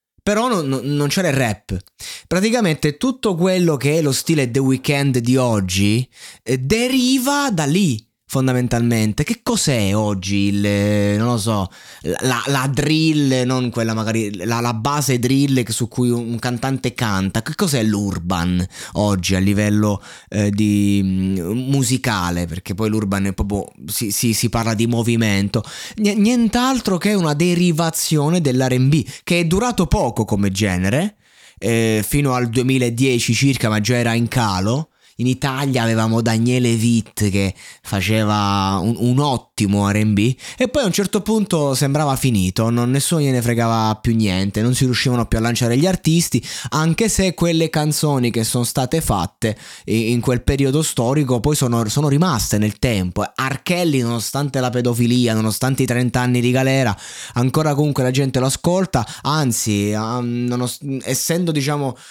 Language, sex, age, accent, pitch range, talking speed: Italian, male, 20-39, native, 110-145 Hz, 150 wpm